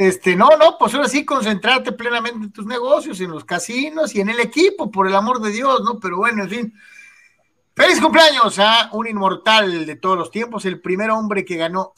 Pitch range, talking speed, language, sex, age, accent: 155-210 Hz, 215 wpm, Spanish, male, 50-69, Mexican